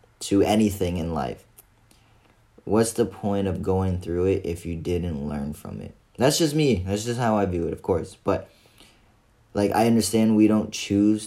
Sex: male